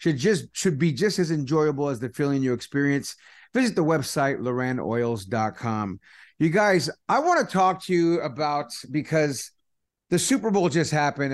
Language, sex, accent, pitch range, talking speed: English, male, American, 135-170 Hz, 165 wpm